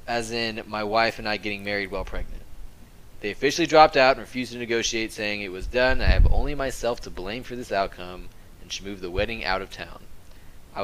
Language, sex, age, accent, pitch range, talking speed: English, male, 20-39, American, 95-125 Hz, 220 wpm